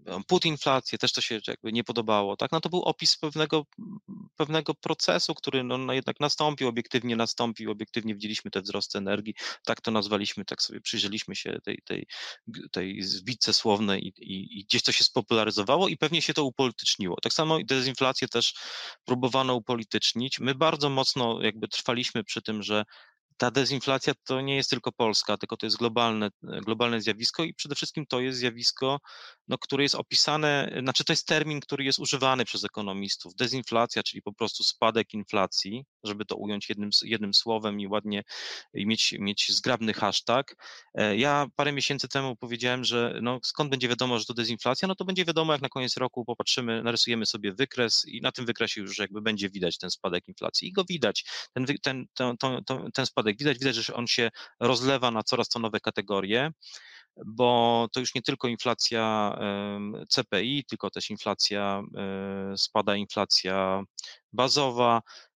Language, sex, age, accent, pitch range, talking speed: Polish, male, 30-49, native, 110-135 Hz, 165 wpm